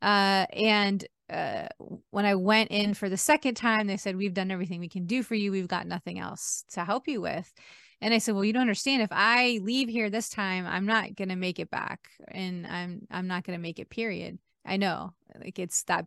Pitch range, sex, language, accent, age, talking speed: 185-220 Hz, female, English, American, 20-39, 235 wpm